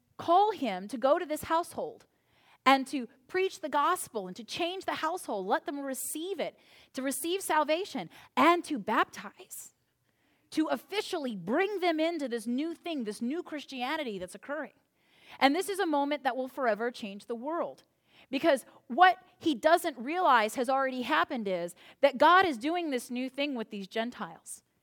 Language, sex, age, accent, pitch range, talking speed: English, female, 30-49, American, 240-330 Hz, 170 wpm